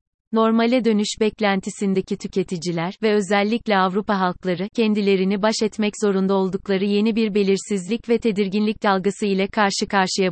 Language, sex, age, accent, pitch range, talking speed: Turkish, female, 30-49, native, 190-220 Hz, 130 wpm